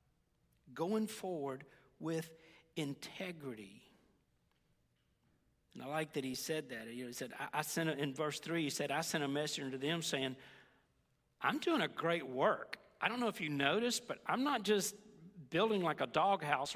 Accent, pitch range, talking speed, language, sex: American, 135-170 Hz, 170 wpm, English, male